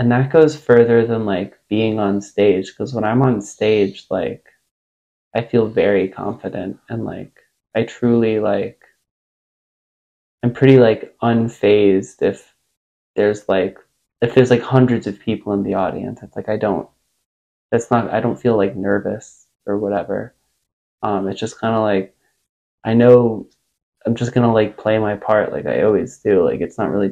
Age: 20-39